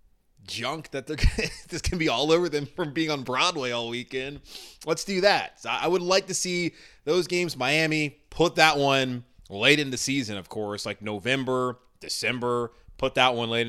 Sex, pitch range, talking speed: male, 95-125 Hz, 190 wpm